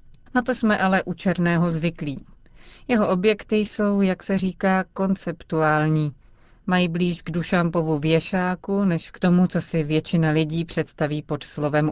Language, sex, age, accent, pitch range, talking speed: Czech, female, 40-59, native, 155-185 Hz, 145 wpm